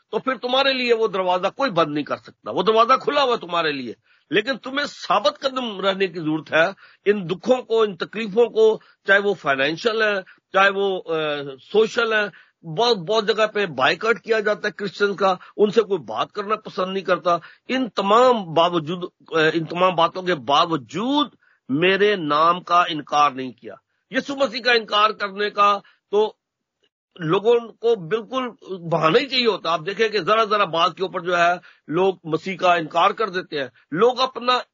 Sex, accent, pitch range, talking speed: male, native, 170-230 Hz, 180 wpm